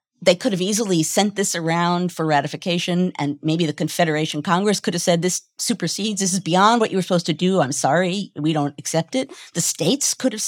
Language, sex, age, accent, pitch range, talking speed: English, female, 50-69, American, 160-240 Hz, 220 wpm